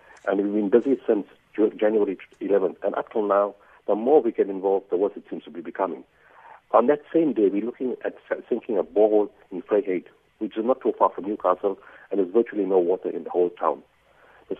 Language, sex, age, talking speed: English, male, 50-69, 215 wpm